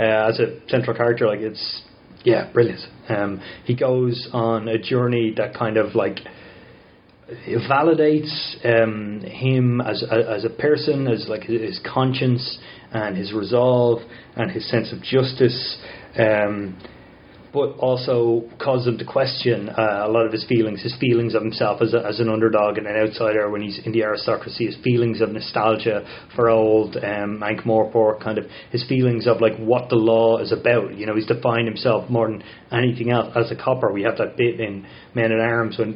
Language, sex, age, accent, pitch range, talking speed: English, male, 30-49, Irish, 110-120 Hz, 185 wpm